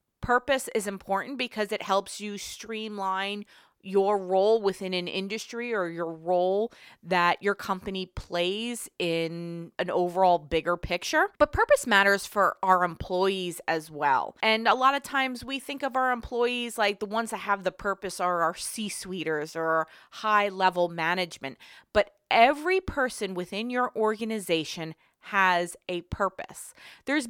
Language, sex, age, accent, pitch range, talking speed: English, female, 20-39, American, 185-235 Hz, 150 wpm